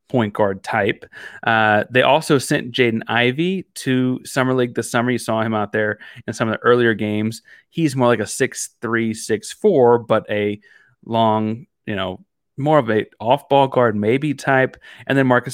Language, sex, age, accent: English, male, 30-49, American